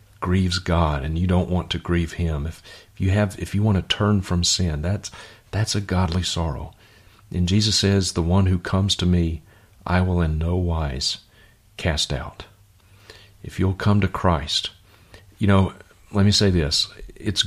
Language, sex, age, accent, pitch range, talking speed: English, male, 40-59, American, 85-100 Hz, 180 wpm